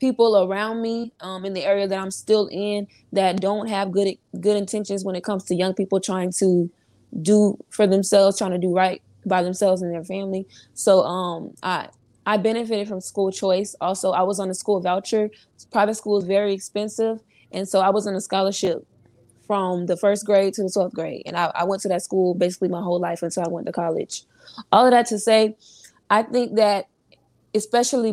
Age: 20-39